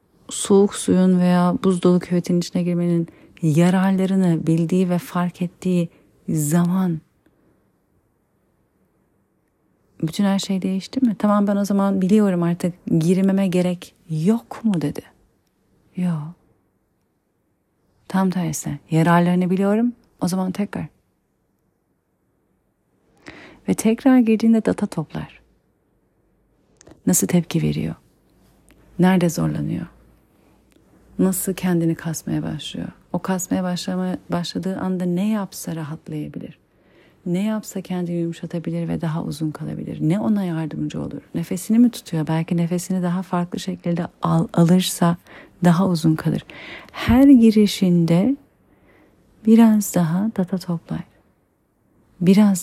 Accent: native